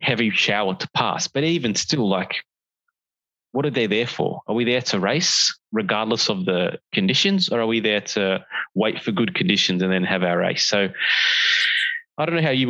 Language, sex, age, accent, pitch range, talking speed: English, male, 20-39, Australian, 100-125 Hz, 200 wpm